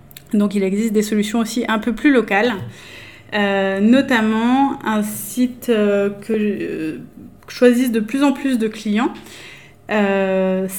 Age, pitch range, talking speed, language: 20-39, 200-230 Hz, 140 wpm, French